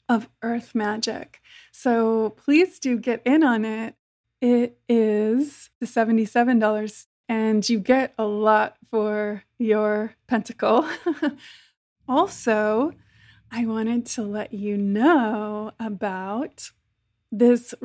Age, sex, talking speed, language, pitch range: 20-39, female, 105 wpm, English, 210-240 Hz